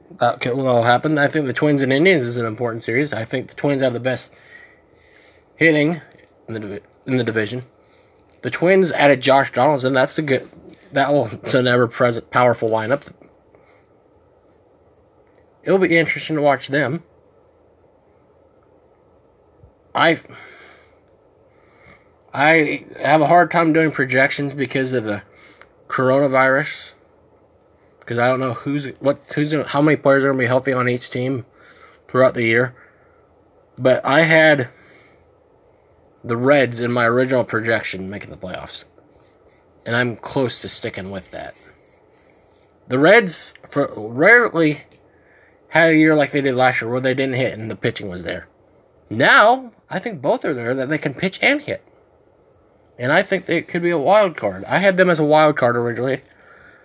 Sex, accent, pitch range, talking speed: male, American, 125-155 Hz, 165 wpm